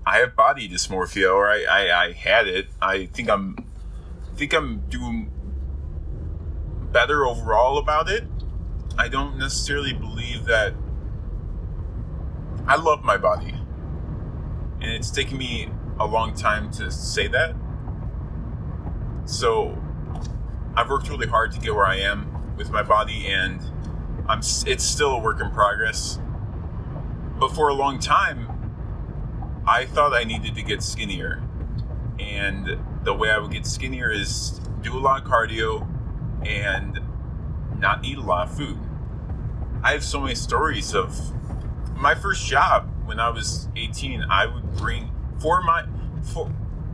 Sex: male